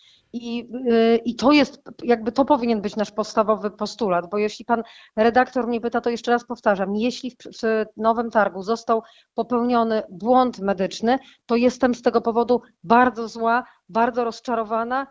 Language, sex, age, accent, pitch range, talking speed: Polish, female, 40-59, native, 225-260 Hz, 155 wpm